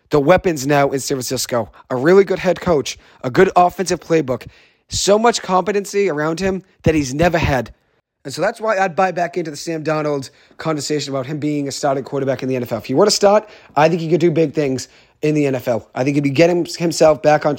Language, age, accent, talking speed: English, 30-49, American, 230 wpm